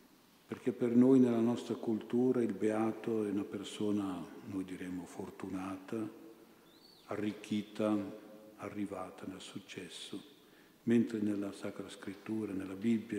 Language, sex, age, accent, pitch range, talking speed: Italian, male, 50-69, native, 100-115 Hz, 110 wpm